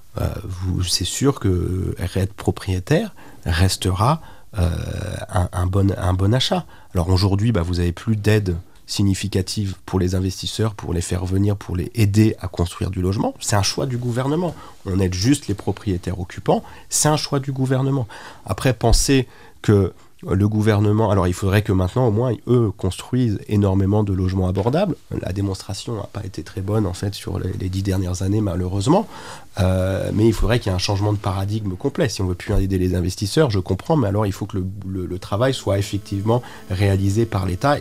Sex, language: male, French